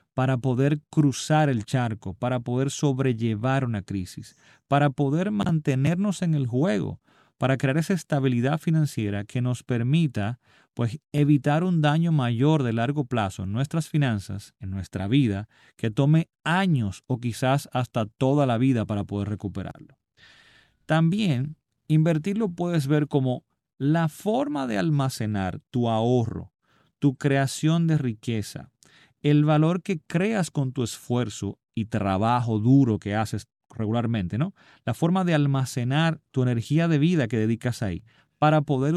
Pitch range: 115-155 Hz